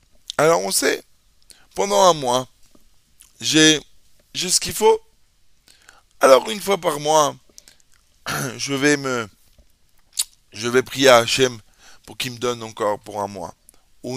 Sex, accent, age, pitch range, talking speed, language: male, French, 20-39, 120-170 Hz, 135 wpm, French